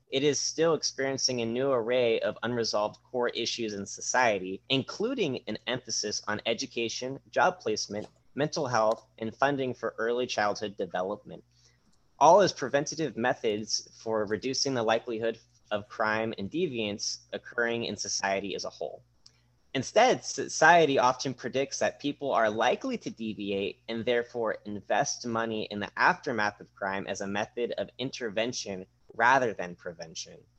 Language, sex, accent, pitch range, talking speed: English, male, American, 105-130 Hz, 145 wpm